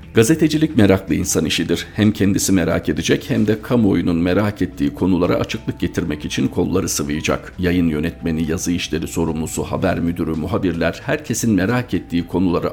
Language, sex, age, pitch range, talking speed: Turkish, male, 50-69, 85-110 Hz, 145 wpm